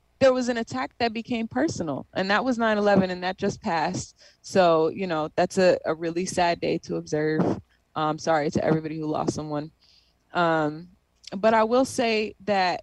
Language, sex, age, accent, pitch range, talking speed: English, female, 20-39, American, 175-225 Hz, 180 wpm